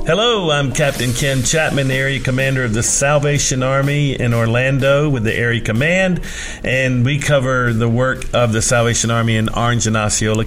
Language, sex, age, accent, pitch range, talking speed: English, male, 50-69, American, 115-150 Hz, 170 wpm